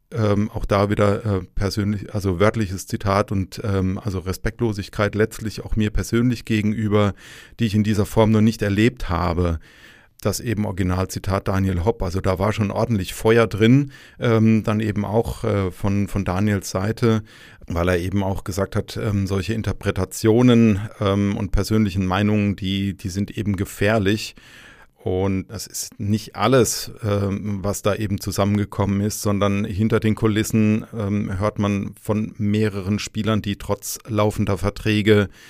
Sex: male